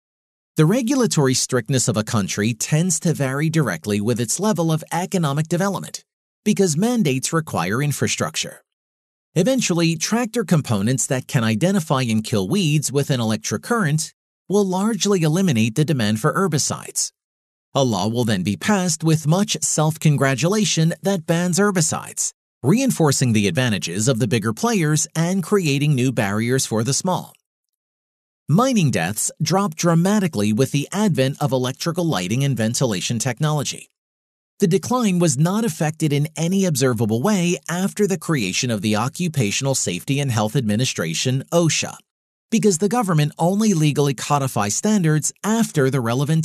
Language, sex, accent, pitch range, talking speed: English, male, American, 125-180 Hz, 140 wpm